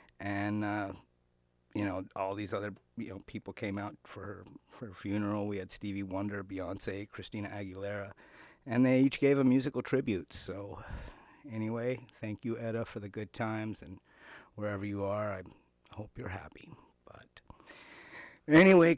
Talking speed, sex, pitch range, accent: 155 wpm, male, 100-130 Hz, American